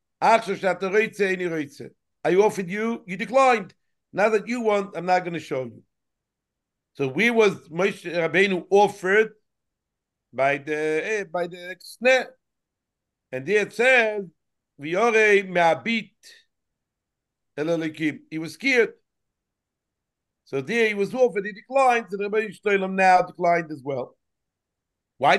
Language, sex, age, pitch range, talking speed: English, male, 60-79, 155-215 Hz, 115 wpm